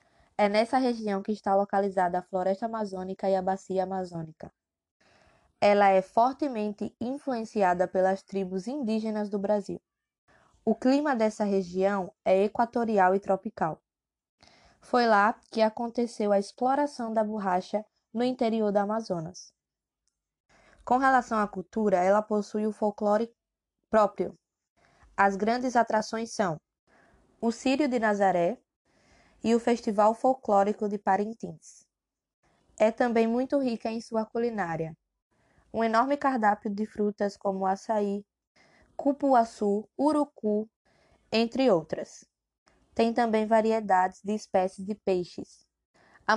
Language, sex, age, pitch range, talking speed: Portuguese, female, 20-39, 195-230 Hz, 120 wpm